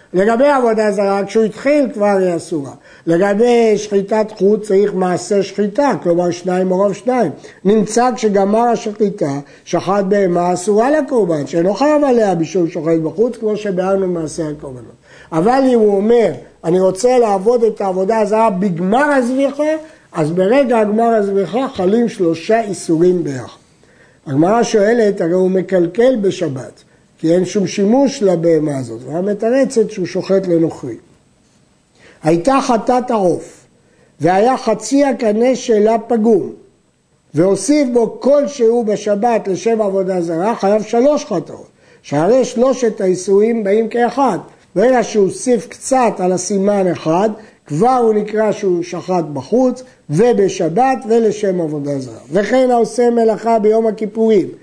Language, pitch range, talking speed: Hebrew, 180-235 Hz, 125 wpm